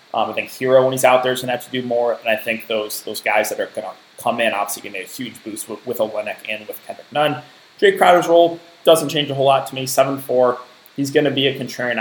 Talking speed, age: 285 wpm, 20-39